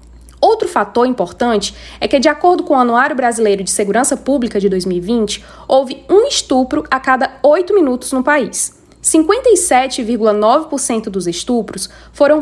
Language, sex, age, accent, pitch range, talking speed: Portuguese, female, 10-29, Brazilian, 220-315 Hz, 140 wpm